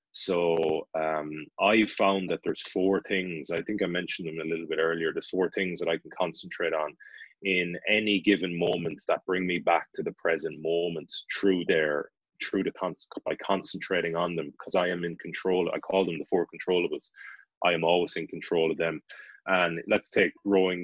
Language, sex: English, male